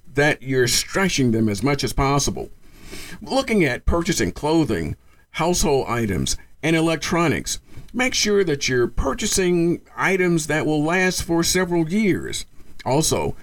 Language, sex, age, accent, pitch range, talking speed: English, male, 50-69, American, 115-170 Hz, 130 wpm